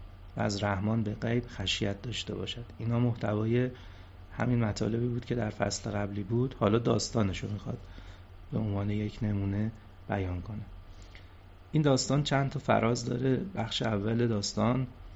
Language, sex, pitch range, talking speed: Persian, male, 95-120 Hz, 140 wpm